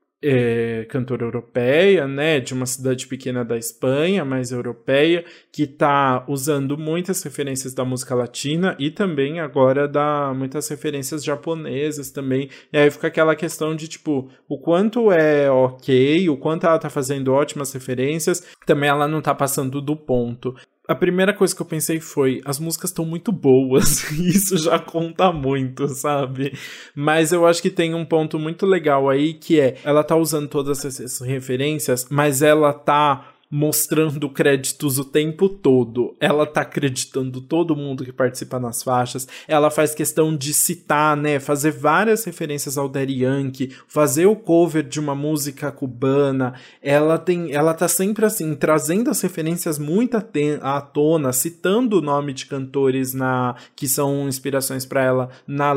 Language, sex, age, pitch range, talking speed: Portuguese, male, 20-39, 135-160 Hz, 160 wpm